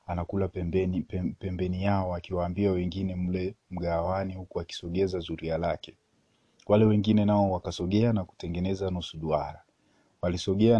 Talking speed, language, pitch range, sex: 115 wpm, Swahili, 90-120 Hz, male